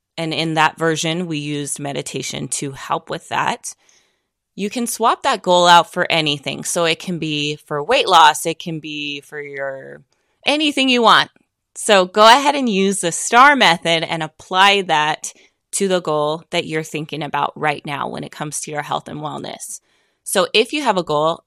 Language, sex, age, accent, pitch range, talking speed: English, female, 20-39, American, 160-205 Hz, 190 wpm